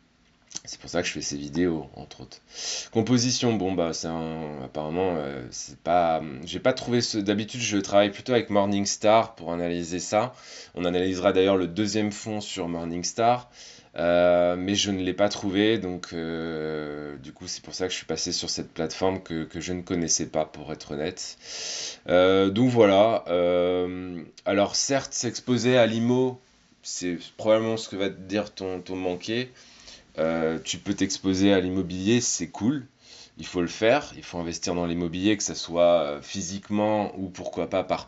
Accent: French